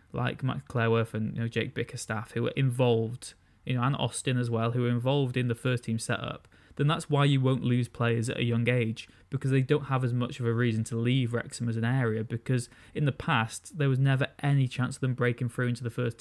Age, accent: 20-39, British